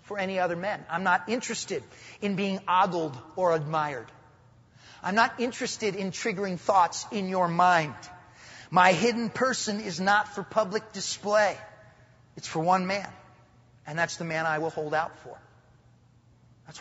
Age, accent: 30-49, American